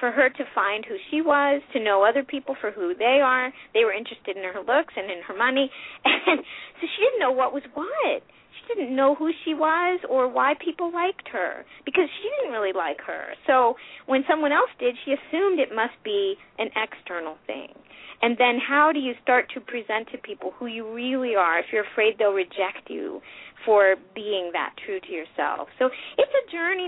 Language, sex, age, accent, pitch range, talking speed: English, female, 30-49, American, 200-310 Hz, 210 wpm